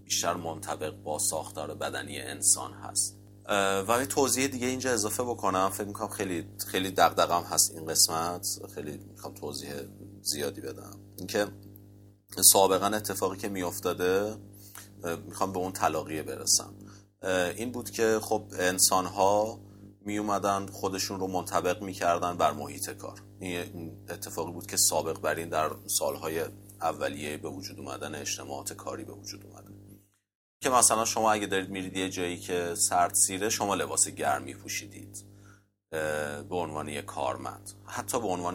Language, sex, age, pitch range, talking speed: Persian, male, 30-49, 90-100 Hz, 140 wpm